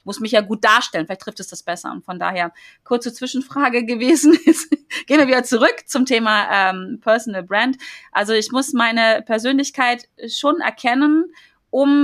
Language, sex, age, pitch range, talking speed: German, female, 30-49, 200-270 Hz, 170 wpm